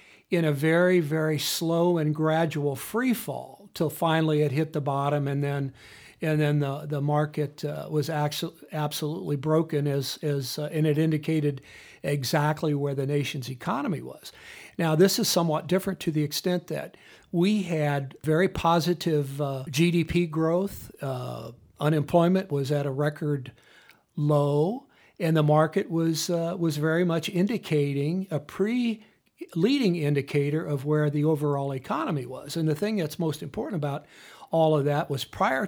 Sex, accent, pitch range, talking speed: male, American, 145-165 Hz, 155 wpm